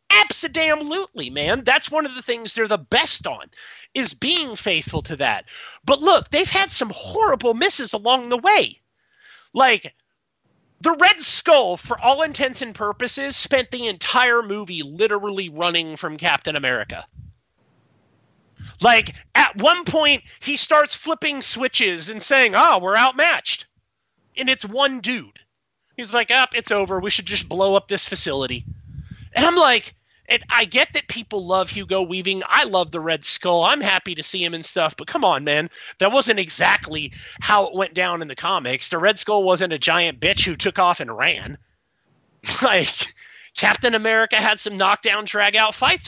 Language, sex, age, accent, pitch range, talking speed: English, male, 30-49, American, 180-265 Hz, 170 wpm